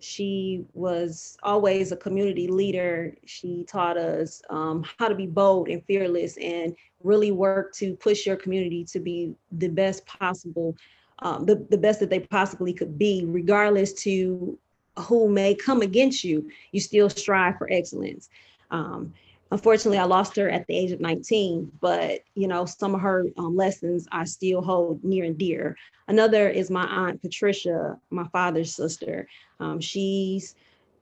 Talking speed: 160 wpm